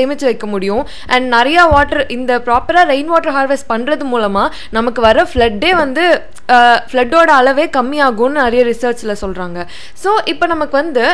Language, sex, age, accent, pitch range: Tamil, female, 20-39, native, 240-325 Hz